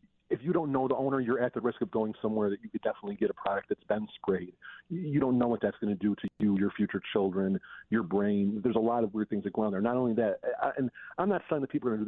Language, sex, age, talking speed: English, male, 40-59, 305 wpm